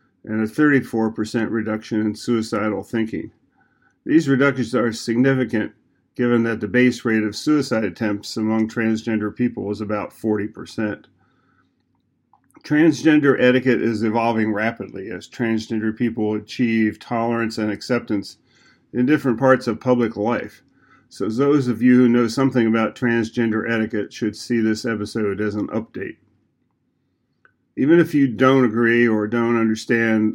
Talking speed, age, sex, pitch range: 135 wpm, 40-59, male, 110-125 Hz